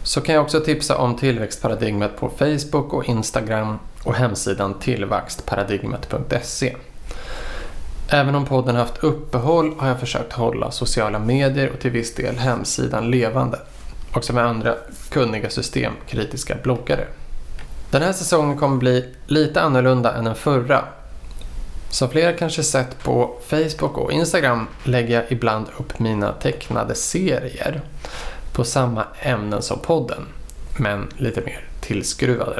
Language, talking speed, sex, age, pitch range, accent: Swedish, 135 wpm, male, 20-39, 115-140 Hz, Norwegian